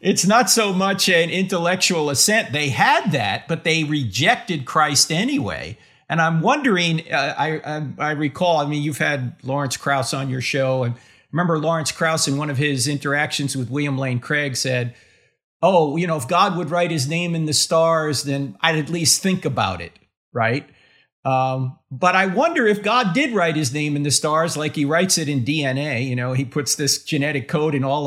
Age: 50-69